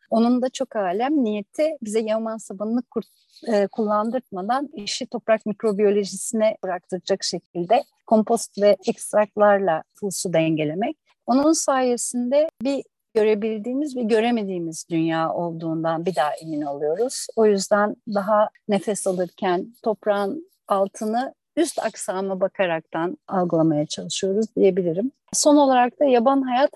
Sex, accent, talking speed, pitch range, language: female, native, 115 wpm, 200-245 Hz, Turkish